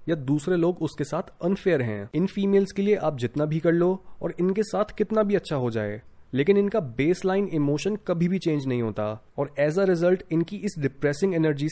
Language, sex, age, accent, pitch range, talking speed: Hindi, male, 20-39, native, 135-185 Hz, 195 wpm